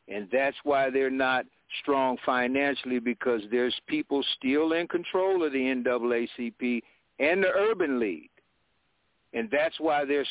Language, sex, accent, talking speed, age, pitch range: English, male, American, 140 wpm, 60-79, 125-155 Hz